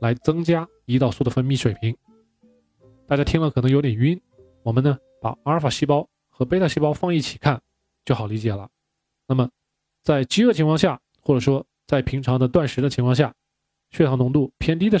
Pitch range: 120-155 Hz